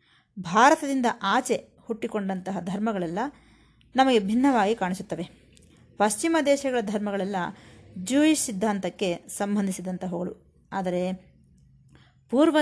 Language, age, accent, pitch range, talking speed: Kannada, 20-39, native, 185-250 Hz, 70 wpm